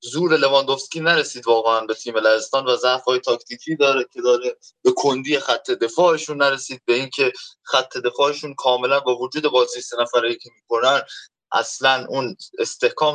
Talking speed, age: 150 wpm, 20-39